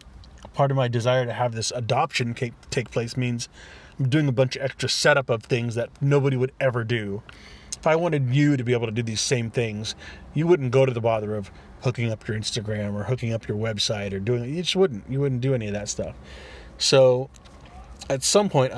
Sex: male